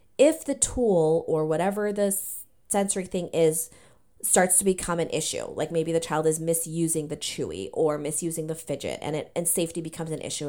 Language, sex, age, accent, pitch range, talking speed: English, female, 30-49, American, 155-180 Hz, 190 wpm